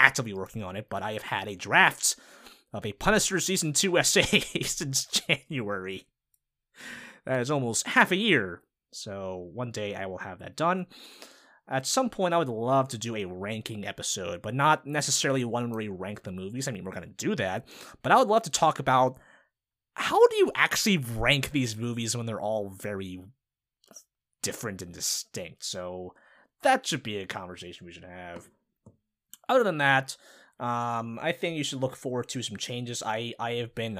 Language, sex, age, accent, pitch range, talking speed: English, male, 20-39, American, 100-145 Hz, 185 wpm